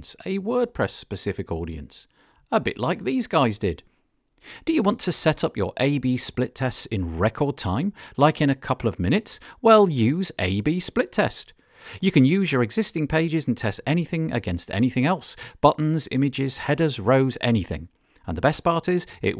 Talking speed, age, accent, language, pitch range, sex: 175 wpm, 40-59, British, English, 110-170 Hz, male